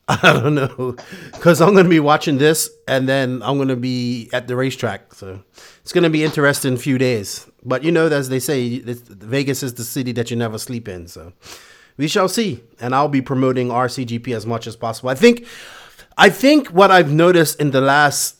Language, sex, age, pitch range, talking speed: English, male, 30-49, 125-155 Hz, 220 wpm